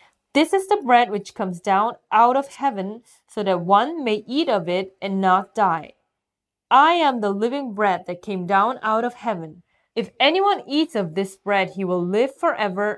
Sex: female